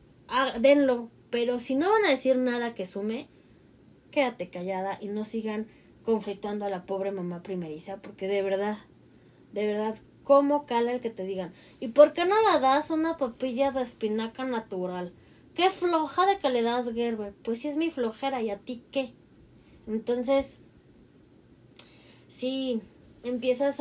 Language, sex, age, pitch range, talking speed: Spanish, female, 20-39, 195-255 Hz, 155 wpm